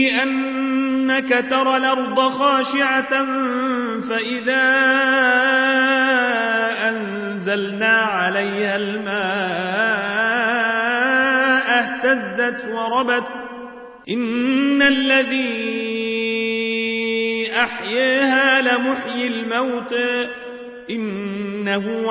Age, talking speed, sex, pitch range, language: 40-59, 40 wpm, male, 230-265 Hz, Arabic